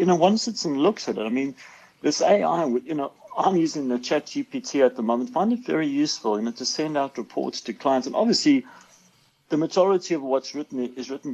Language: English